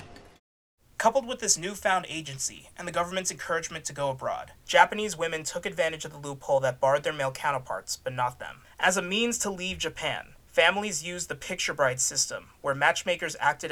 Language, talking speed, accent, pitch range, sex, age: English, 185 wpm, American, 135-175 Hz, male, 30-49